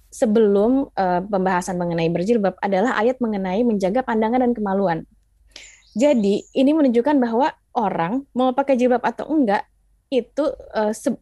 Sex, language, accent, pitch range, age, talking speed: female, Indonesian, native, 190-260 Hz, 20-39, 135 wpm